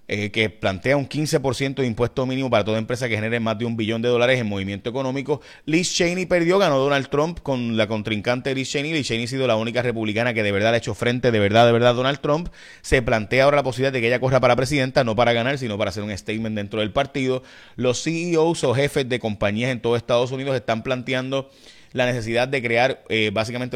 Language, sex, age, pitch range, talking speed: Spanish, male, 30-49, 105-130 Hz, 230 wpm